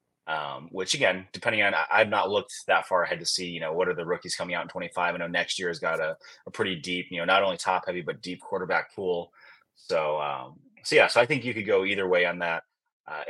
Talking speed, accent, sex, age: 265 wpm, American, male, 30-49